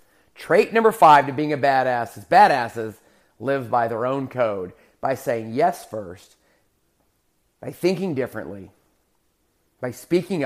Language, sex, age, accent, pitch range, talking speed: English, male, 30-49, American, 105-130 Hz, 130 wpm